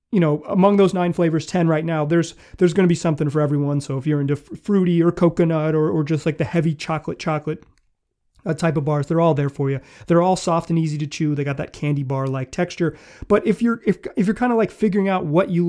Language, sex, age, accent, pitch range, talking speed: English, male, 30-49, American, 150-200 Hz, 260 wpm